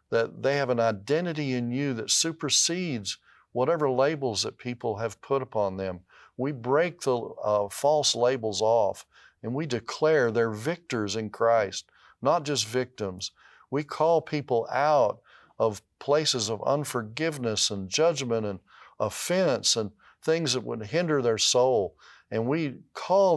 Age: 50-69